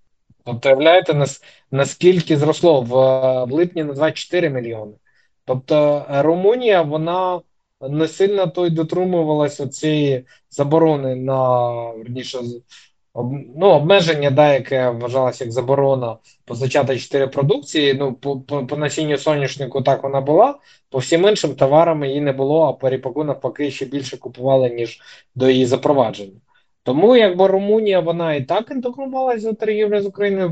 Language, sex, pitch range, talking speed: Ukrainian, male, 130-175 Hz, 130 wpm